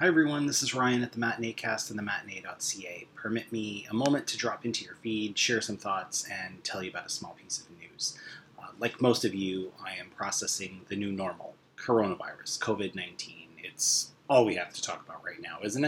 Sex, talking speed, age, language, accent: male, 210 wpm, 30-49, English, American